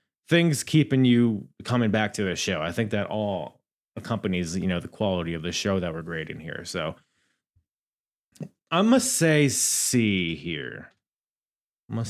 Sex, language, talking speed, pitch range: male, English, 165 wpm, 95-125 Hz